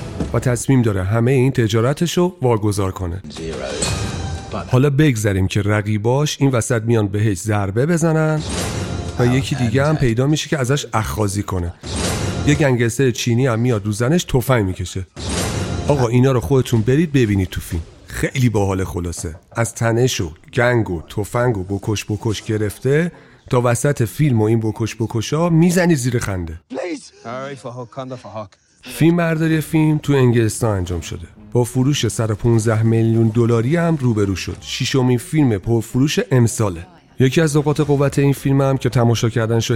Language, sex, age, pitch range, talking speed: Persian, male, 40-59, 100-130 Hz, 150 wpm